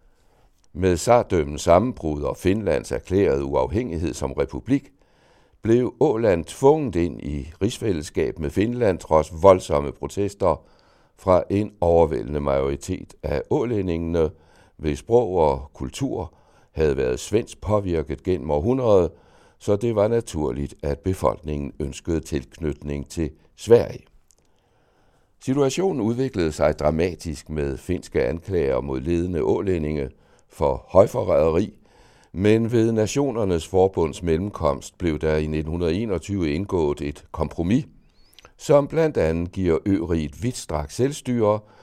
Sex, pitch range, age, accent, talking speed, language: male, 75-105 Hz, 60-79, native, 110 wpm, Danish